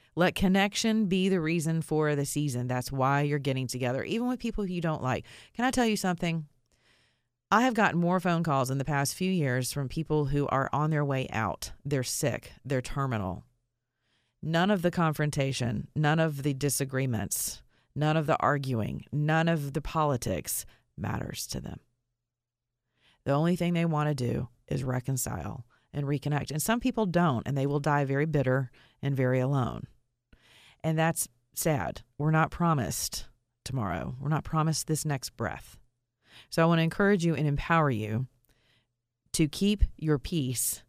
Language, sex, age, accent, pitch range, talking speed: English, female, 40-59, American, 125-170 Hz, 170 wpm